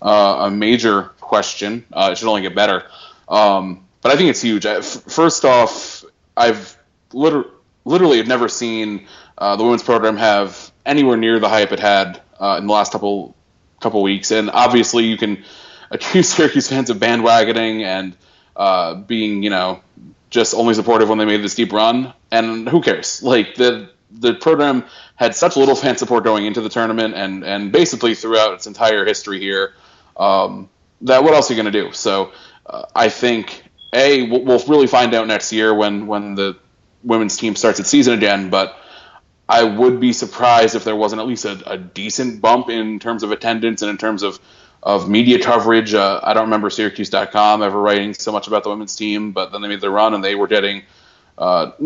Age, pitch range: 20-39, 100-115 Hz